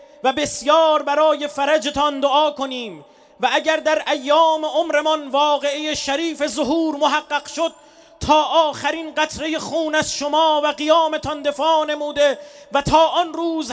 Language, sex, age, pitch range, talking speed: Persian, male, 30-49, 290-315 Hz, 130 wpm